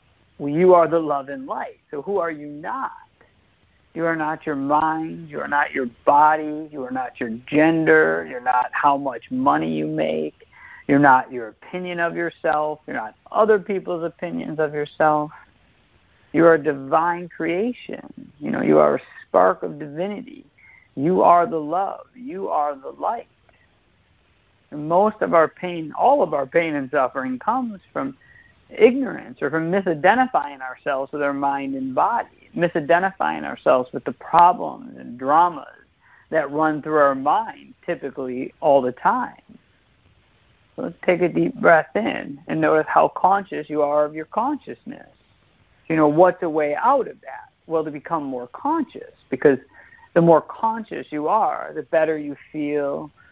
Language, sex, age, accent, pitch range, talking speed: English, male, 50-69, American, 140-170 Hz, 165 wpm